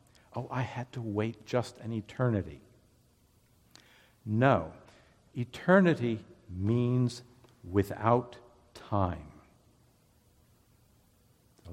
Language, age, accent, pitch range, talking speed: English, 60-79, American, 100-125 Hz, 70 wpm